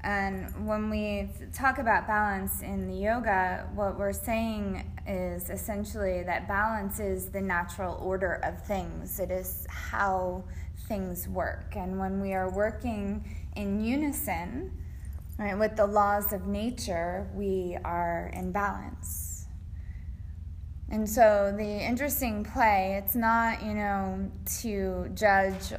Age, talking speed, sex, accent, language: 20-39, 130 wpm, female, American, English